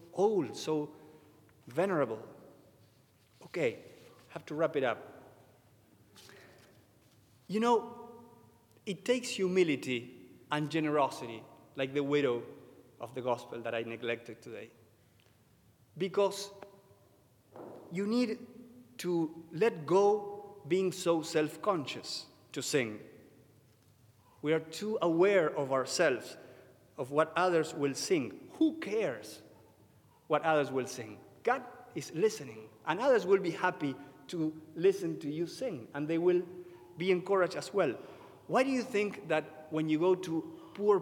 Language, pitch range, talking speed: English, 130-195 Hz, 125 wpm